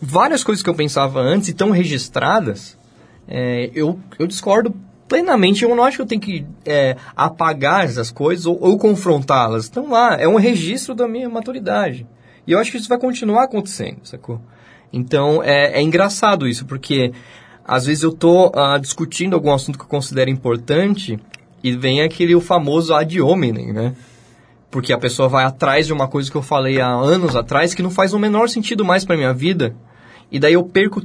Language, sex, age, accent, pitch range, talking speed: Portuguese, male, 20-39, Brazilian, 130-180 Hz, 195 wpm